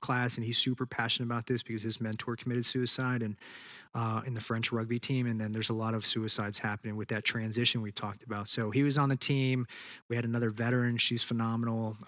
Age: 20-39